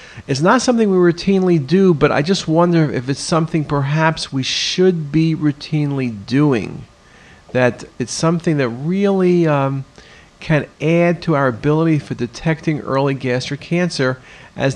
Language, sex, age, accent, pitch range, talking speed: English, male, 50-69, American, 135-165 Hz, 145 wpm